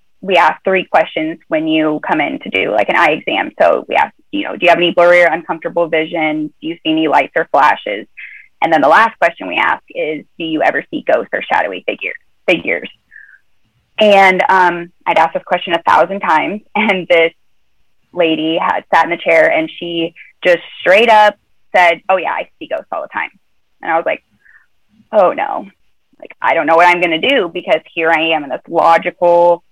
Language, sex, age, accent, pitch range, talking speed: English, female, 20-39, American, 165-200 Hz, 210 wpm